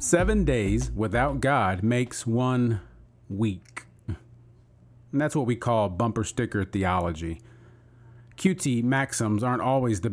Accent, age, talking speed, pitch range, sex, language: American, 40-59, 120 wpm, 110-130 Hz, male, English